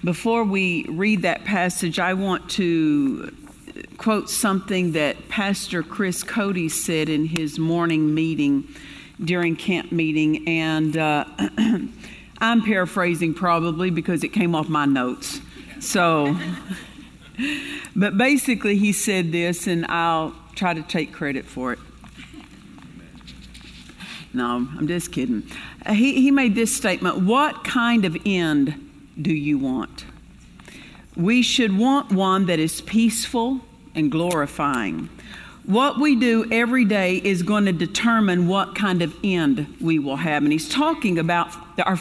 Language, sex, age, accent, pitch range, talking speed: English, female, 50-69, American, 170-230 Hz, 135 wpm